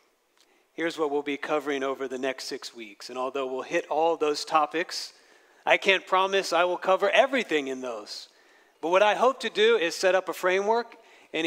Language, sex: English, male